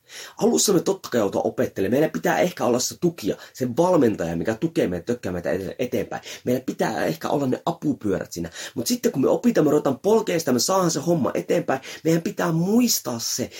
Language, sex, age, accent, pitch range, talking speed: Finnish, male, 30-49, native, 125-200 Hz, 175 wpm